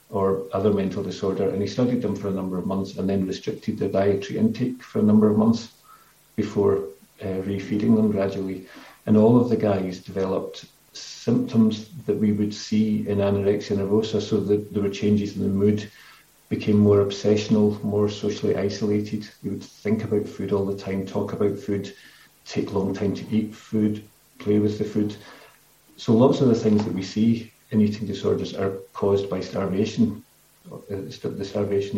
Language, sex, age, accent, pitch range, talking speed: English, male, 40-59, British, 100-110 Hz, 180 wpm